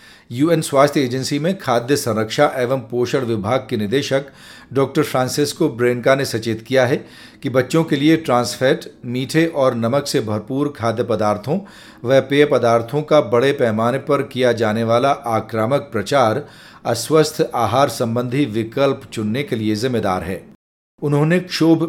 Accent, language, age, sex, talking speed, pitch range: native, Hindi, 40-59, male, 145 wpm, 120-145 Hz